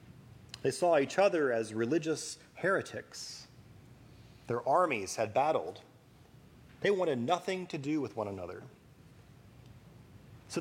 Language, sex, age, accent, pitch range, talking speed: English, male, 30-49, American, 115-145 Hz, 115 wpm